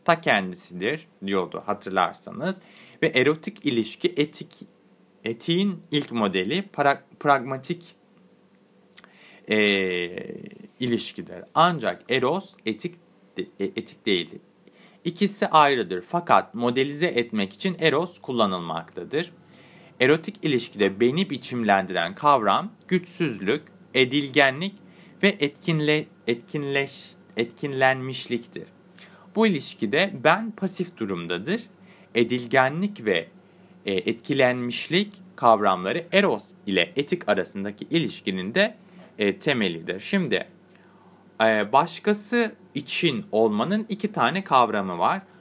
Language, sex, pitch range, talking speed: Turkish, male, 120-190 Hz, 85 wpm